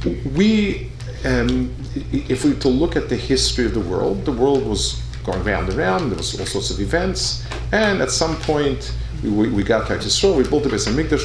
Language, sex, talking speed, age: English, male, 210 wpm, 50-69